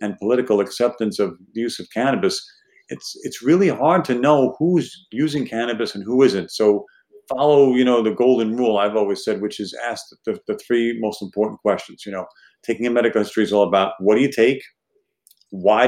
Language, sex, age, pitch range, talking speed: English, male, 50-69, 105-125 Hz, 200 wpm